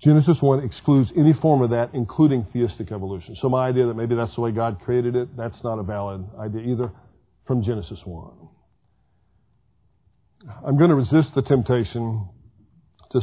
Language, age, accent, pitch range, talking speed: English, 50-69, American, 110-135 Hz, 170 wpm